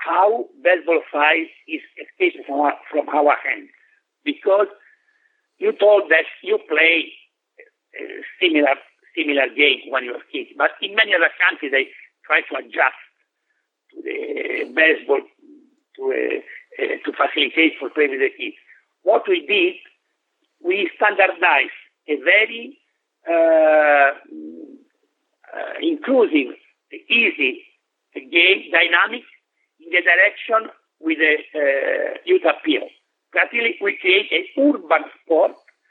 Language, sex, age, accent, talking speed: English, male, 60-79, Italian, 120 wpm